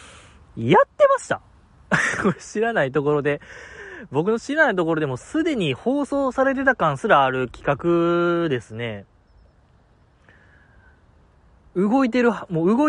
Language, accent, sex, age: Japanese, native, male, 20-39